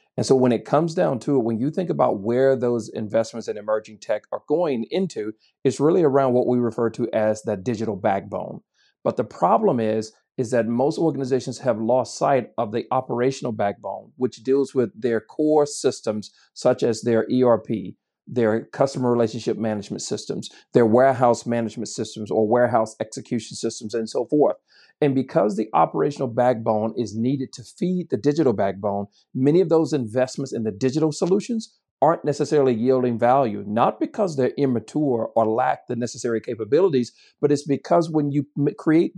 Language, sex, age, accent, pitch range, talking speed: English, male, 40-59, American, 115-140 Hz, 170 wpm